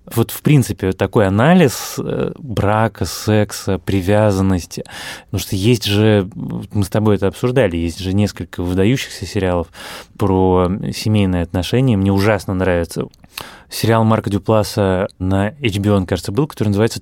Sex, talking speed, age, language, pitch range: male, 135 wpm, 20-39, Russian, 95-115 Hz